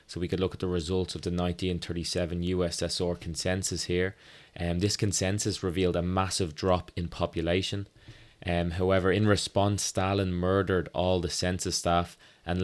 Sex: male